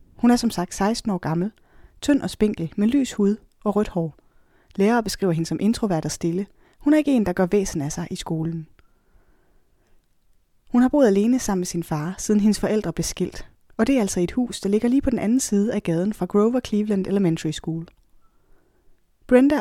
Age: 20-39